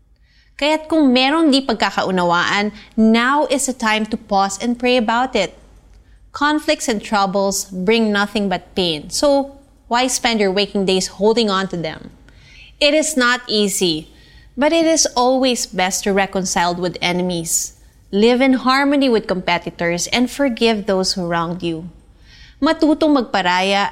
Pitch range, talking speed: 185-250 Hz, 145 wpm